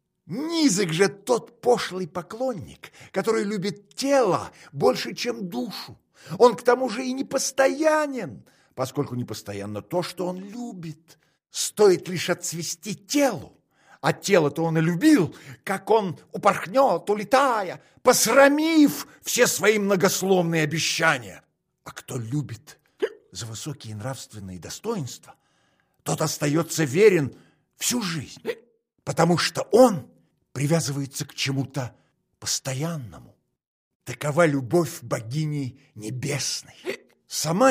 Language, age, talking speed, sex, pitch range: Russian, 50-69, 105 wpm, male, 150-235 Hz